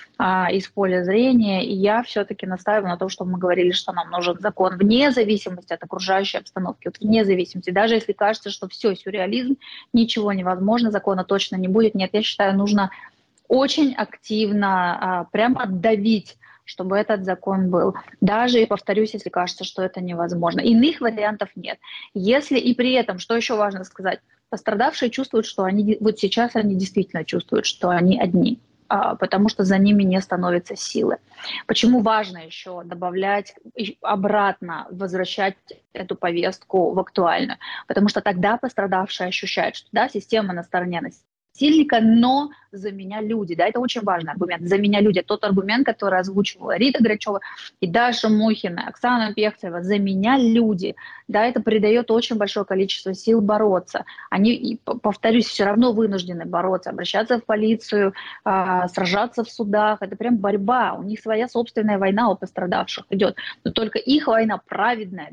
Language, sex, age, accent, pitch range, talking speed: Russian, female, 20-39, native, 190-225 Hz, 155 wpm